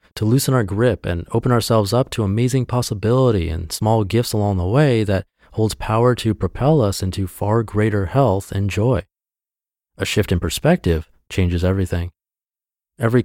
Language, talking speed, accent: English, 165 wpm, American